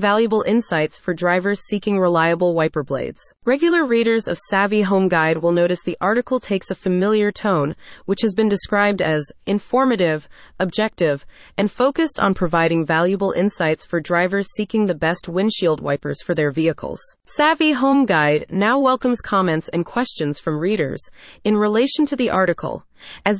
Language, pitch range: English, 170-225 Hz